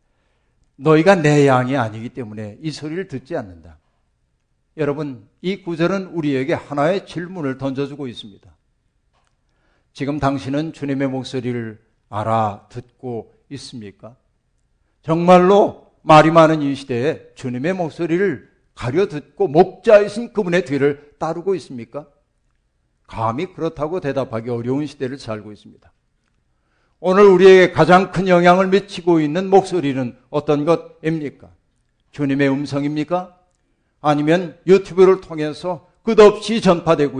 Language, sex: Korean, male